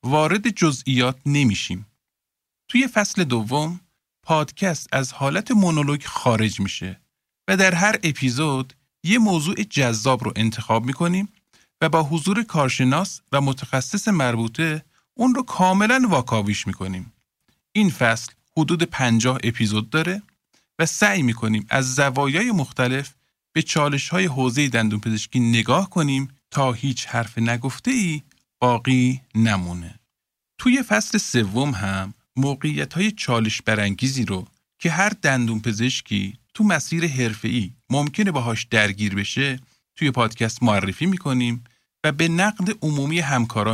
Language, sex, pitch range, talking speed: Persian, male, 115-165 Hz, 120 wpm